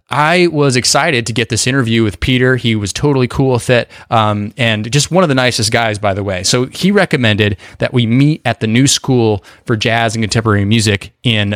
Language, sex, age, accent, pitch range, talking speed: English, male, 20-39, American, 110-135 Hz, 220 wpm